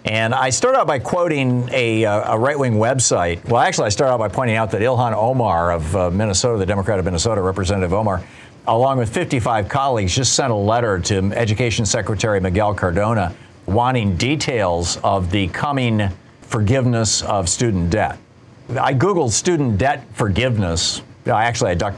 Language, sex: English, male